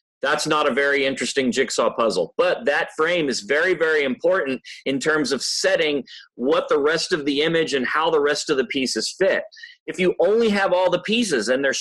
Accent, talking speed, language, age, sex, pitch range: American, 210 wpm, English, 30-49, male, 140-190 Hz